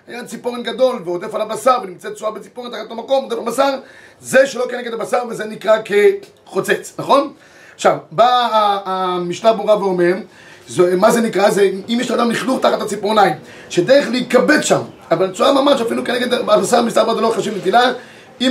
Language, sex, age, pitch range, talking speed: Hebrew, male, 30-49, 200-250 Hz, 170 wpm